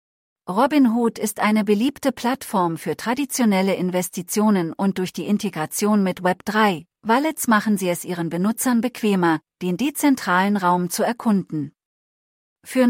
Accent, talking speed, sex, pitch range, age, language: German, 125 wpm, female, 175-230 Hz, 40-59, English